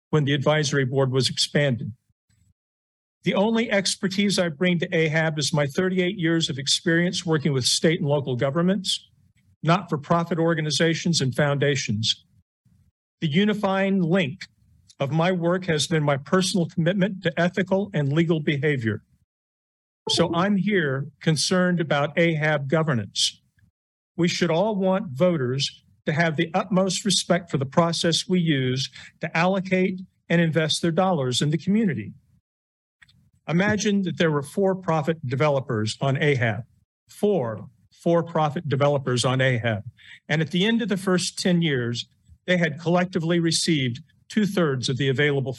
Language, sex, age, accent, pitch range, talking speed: English, male, 50-69, American, 135-185 Hz, 140 wpm